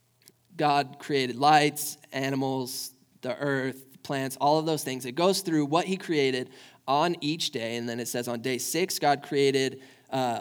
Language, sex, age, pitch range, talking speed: English, male, 20-39, 130-160 Hz, 175 wpm